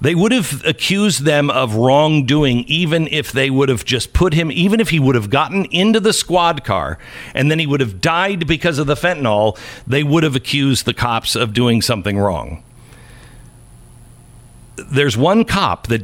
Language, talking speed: English, 185 wpm